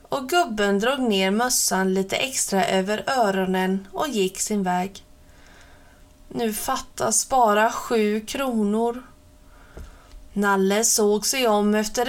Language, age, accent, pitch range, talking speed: Swedish, 30-49, native, 200-275 Hz, 115 wpm